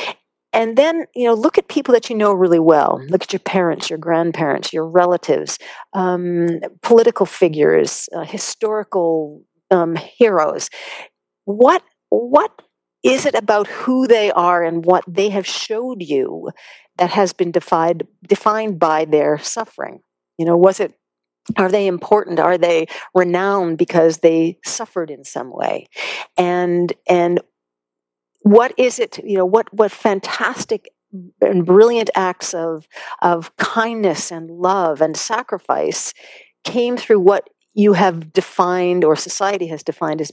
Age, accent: 50-69, American